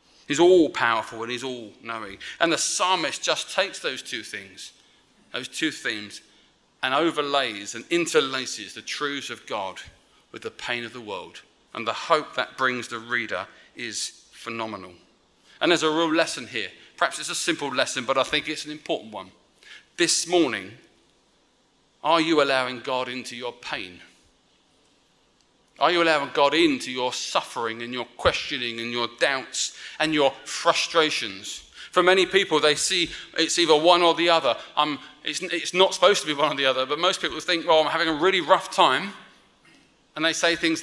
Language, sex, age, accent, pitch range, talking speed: English, male, 30-49, British, 135-180 Hz, 175 wpm